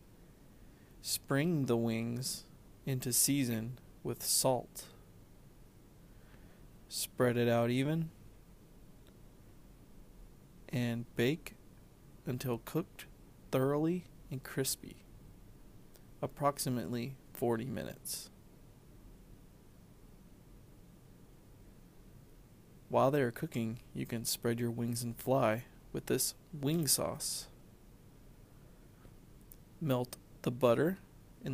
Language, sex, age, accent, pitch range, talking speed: English, male, 30-49, American, 120-140 Hz, 75 wpm